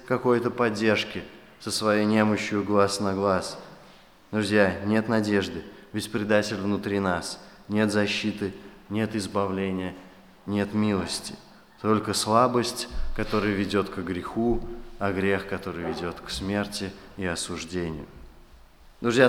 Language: Russian